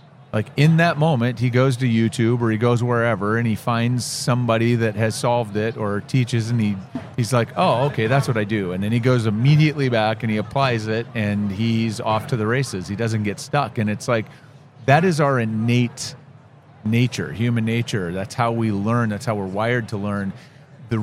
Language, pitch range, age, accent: English, 105-130 Hz, 40-59, American